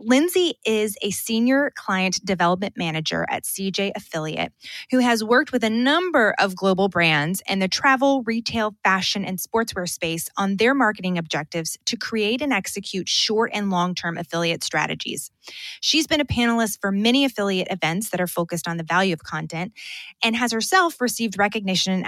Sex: female